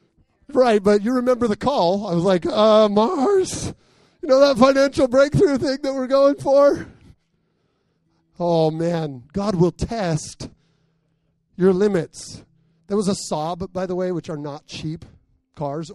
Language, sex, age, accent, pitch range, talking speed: English, male, 30-49, American, 155-230 Hz, 150 wpm